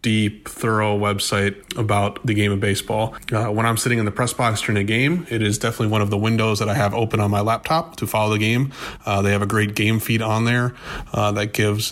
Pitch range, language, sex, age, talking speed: 105-115 Hz, English, male, 30-49, 245 wpm